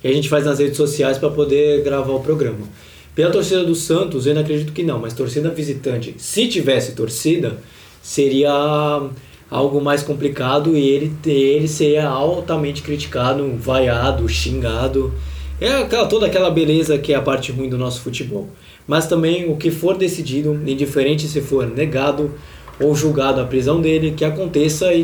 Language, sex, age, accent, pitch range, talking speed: Portuguese, male, 20-39, Brazilian, 140-170 Hz, 165 wpm